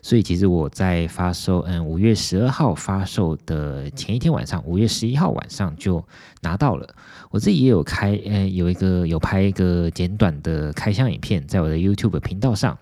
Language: Chinese